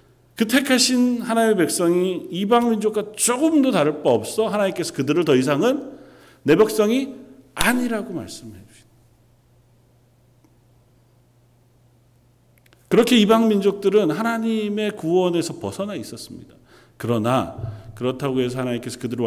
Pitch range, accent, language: 120-190 Hz, native, Korean